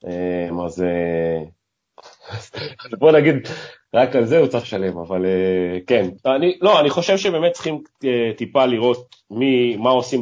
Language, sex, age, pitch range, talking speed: Hebrew, male, 30-49, 95-135 Hz, 130 wpm